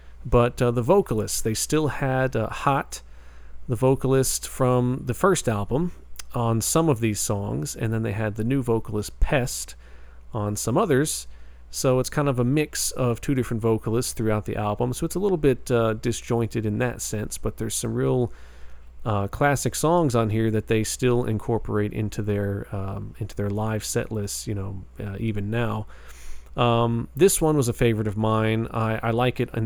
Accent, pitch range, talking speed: American, 105-125 Hz, 190 wpm